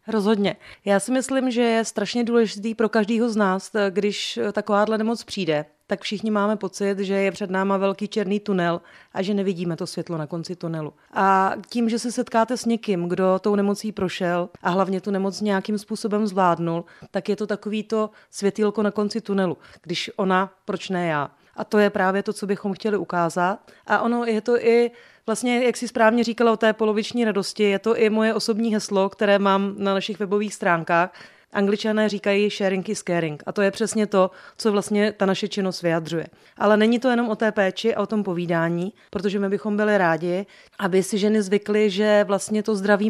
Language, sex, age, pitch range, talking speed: Czech, female, 30-49, 190-215 Hz, 195 wpm